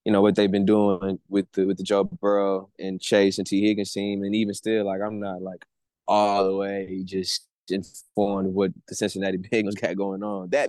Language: English